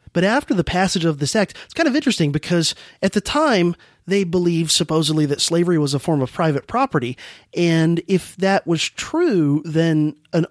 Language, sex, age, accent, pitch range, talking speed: English, male, 30-49, American, 140-175 Hz, 190 wpm